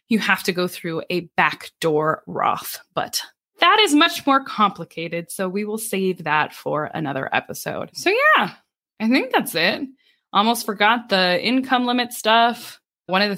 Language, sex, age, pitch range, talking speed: English, female, 20-39, 175-270 Hz, 165 wpm